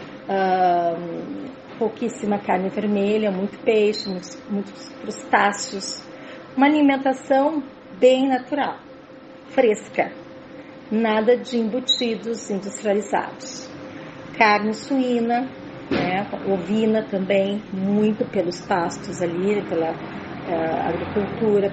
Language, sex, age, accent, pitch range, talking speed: Portuguese, female, 40-59, Brazilian, 190-250 Hz, 85 wpm